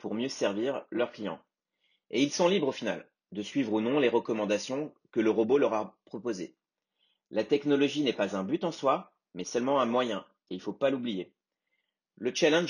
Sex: male